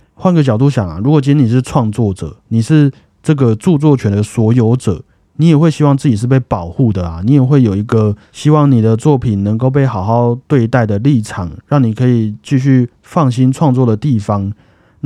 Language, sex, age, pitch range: Chinese, male, 20-39, 110-145 Hz